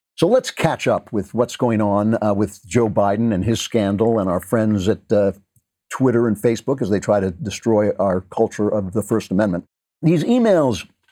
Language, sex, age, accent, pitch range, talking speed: English, male, 50-69, American, 100-125 Hz, 195 wpm